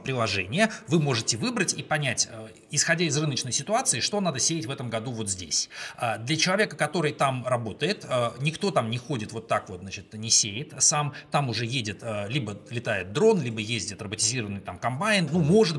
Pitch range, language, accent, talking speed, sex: 115-155 Hz, Russian, native, 180 wpm, male